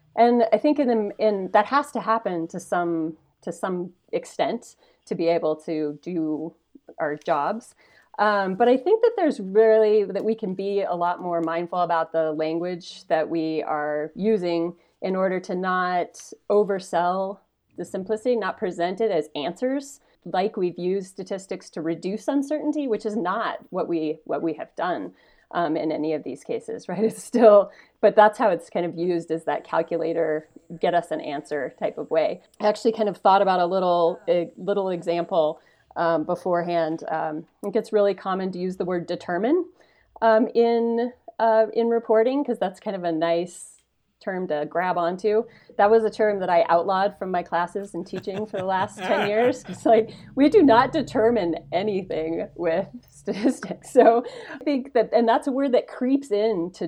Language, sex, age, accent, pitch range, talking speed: English, female, 30-49, American, 170-220 Hz, 185 wpm